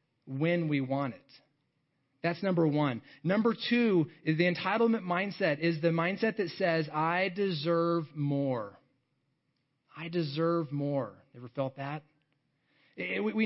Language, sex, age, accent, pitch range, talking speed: English, male, 30-49, American, 145-190 Hz, 120 wpm